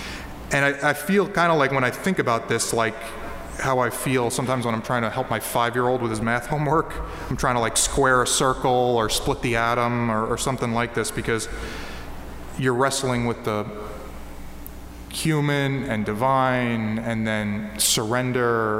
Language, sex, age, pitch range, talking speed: English, male, 20-39, 110-135 Hz, 175 wpm